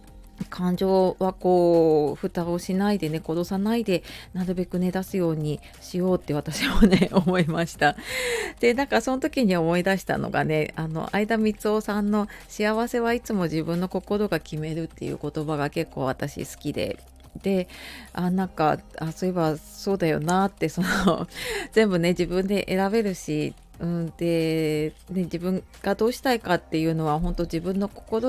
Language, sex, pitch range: Japanese, female, 160-205 Hz